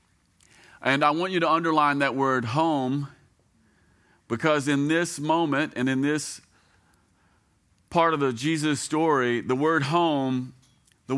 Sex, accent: male, American